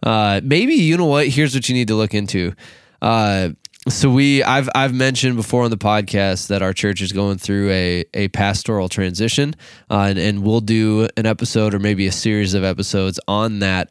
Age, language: 20-39, English